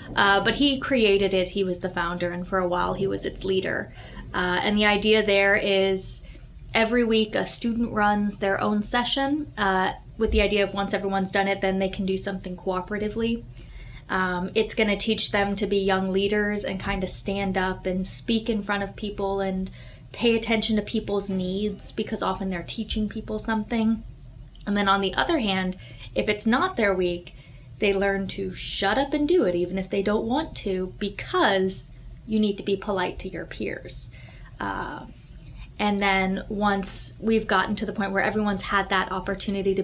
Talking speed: 190 wpm